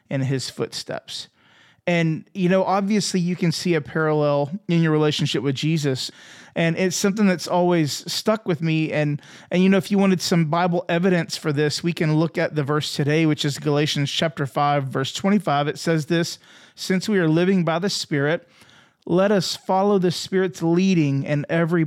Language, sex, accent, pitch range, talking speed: English, male, American, 145-180 Hz, 190 wpm